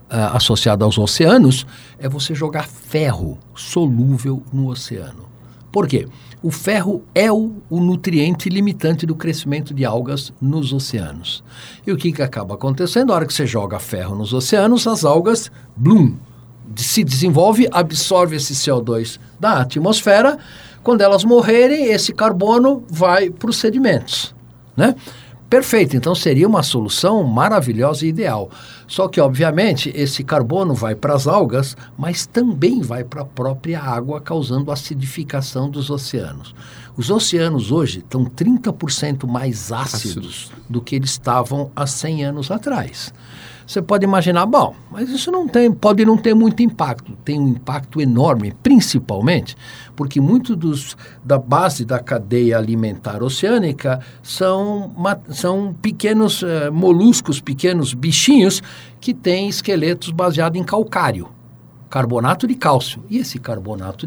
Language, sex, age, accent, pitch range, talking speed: Portuguese, male, 60-79, Brazilian, 125-190 Hz, 140 wpm